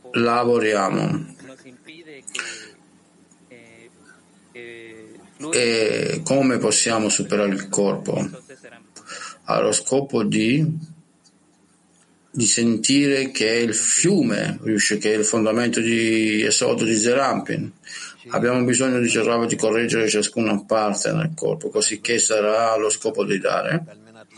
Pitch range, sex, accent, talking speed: 105-125 Hz, male, native, 105 wpm